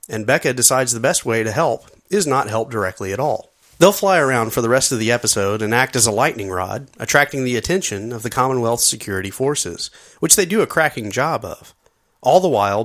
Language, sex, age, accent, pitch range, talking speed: English, male, 30-49, American, 105-145 Hz, 220 wpm